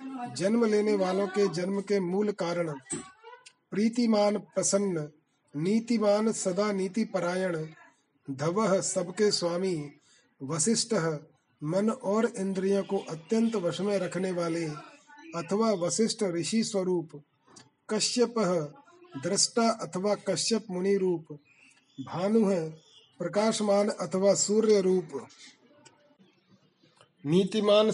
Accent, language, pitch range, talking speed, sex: native, Hindi, 165-205 Hz, 90 wpm, male